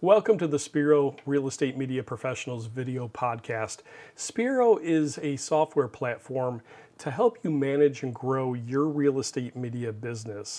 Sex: male